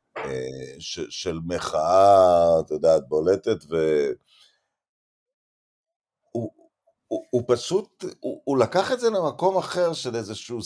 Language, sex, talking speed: Hebrew, male, 95 wpm